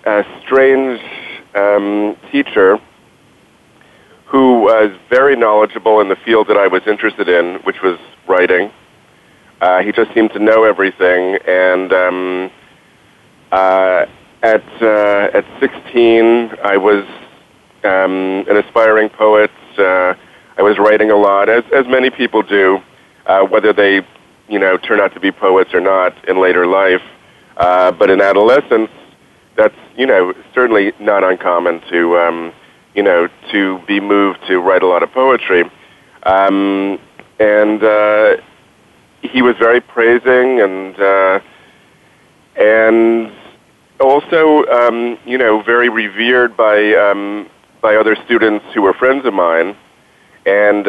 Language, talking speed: English, 135 wpm